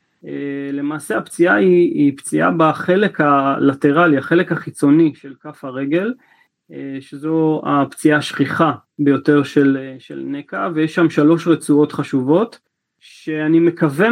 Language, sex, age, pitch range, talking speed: Hebrew, male, 30-49, 145-170 Hz, 110 wpm